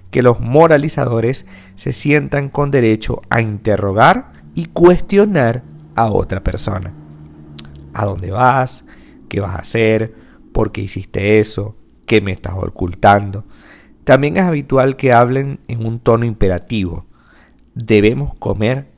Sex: male